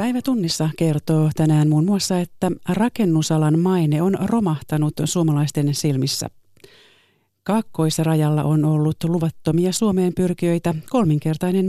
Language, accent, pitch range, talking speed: Finnish, native, 150-185 Hz, 100 wpm